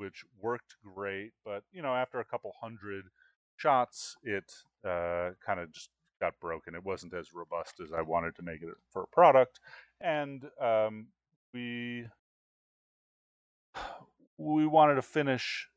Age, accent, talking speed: 30-49, American, 145 wpm